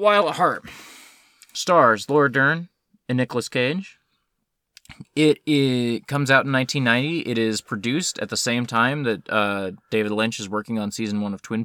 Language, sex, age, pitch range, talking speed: English, male, 20-39, 115-155 Hz, 170 wpm